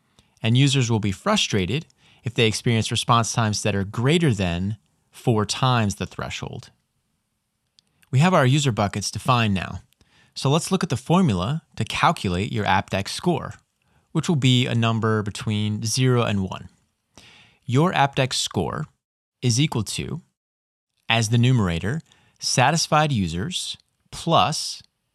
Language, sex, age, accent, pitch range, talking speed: English, male, 30-49, American, 100-135 Hz, 135 wpm